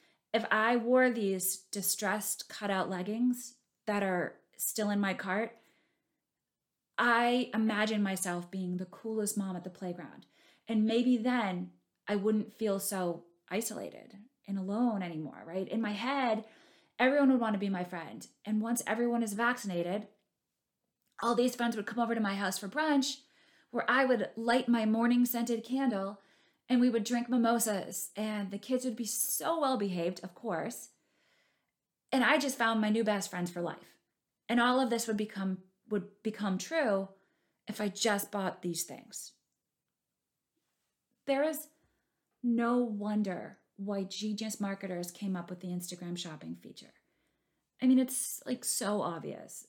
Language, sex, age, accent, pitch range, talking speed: English, female, 20-39, American, 195-240 Hz, 155 wpm